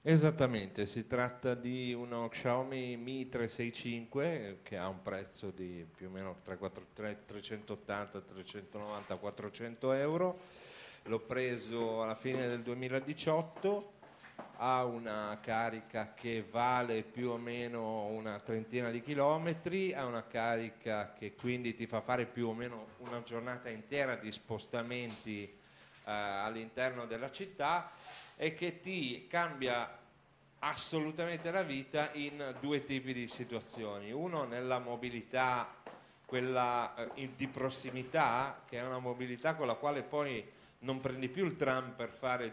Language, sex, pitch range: Italian, male, 115-140 Hz